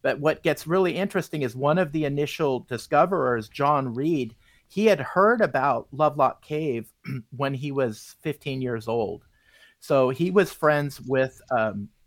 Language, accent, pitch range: English, American, 120-145 Hz